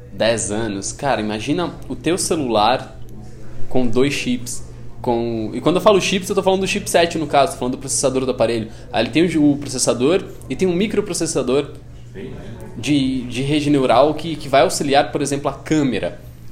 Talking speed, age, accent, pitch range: 180 wpm, 20-39, Brazilian, 115-145 Hz